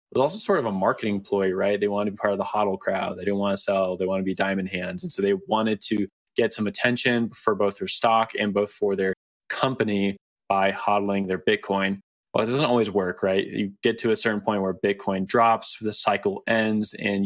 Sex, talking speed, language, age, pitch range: male, 235 wpm, English, 20-39, 100-110 Hz